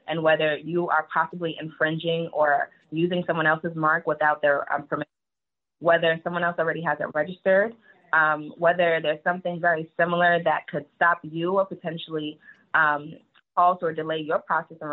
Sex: female